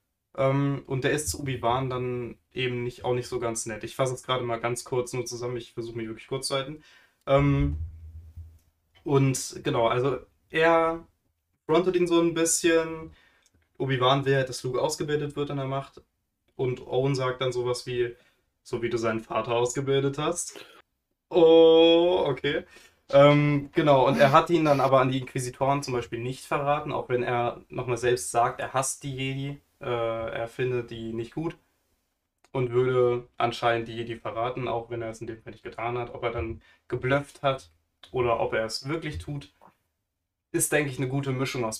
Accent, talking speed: German, 185 wpm